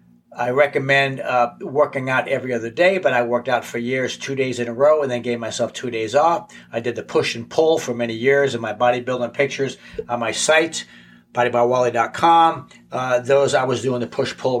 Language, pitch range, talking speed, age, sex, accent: English, 120-150 Hz, 205 wpm, 60-79, male, American